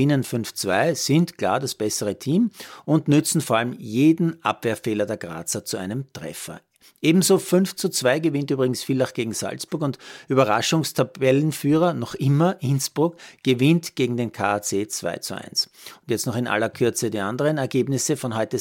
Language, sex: German, male